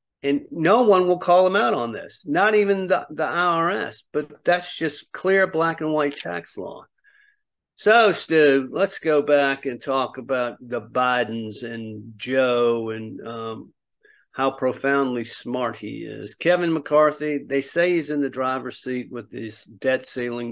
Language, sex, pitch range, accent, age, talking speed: English, male, 115-145 Hz, American, 50-69, 160 wpm